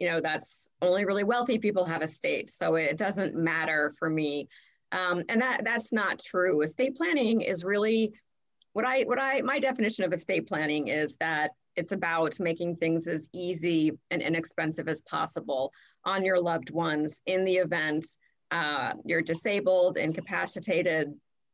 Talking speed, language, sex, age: 160 wpm, English, female, 30-49